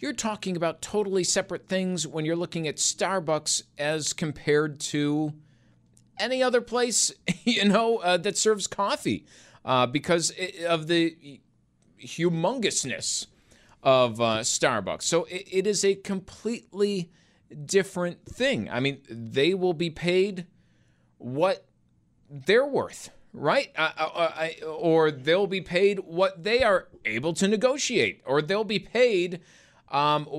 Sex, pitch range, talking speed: male, 155-195 Hz, 125 wpm